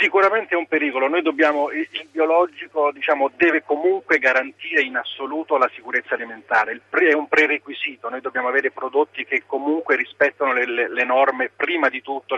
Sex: male